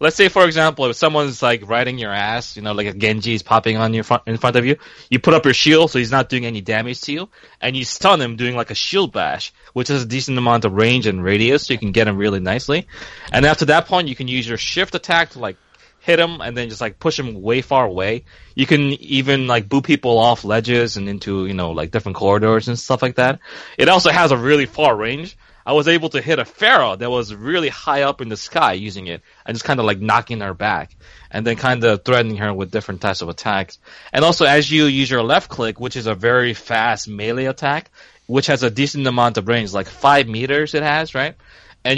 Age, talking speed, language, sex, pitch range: 20-39, 250 wpm, English, male, 110-140 Hz